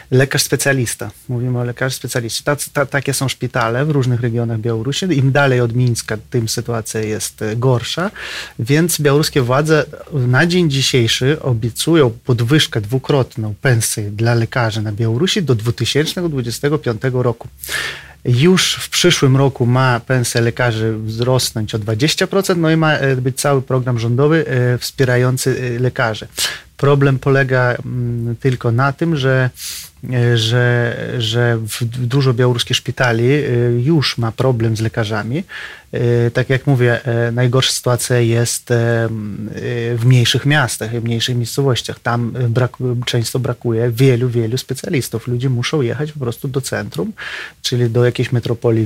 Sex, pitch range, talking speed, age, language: male, 120-140 Hz, 130 wpm, 30-49, Polish